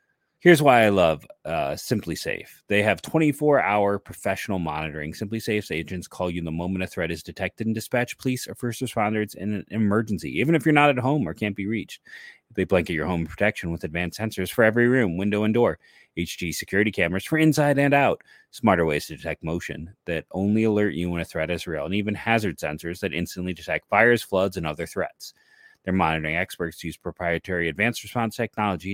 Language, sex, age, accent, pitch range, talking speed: English, male, 30-49, American, 85-120 Hz, 200 wpm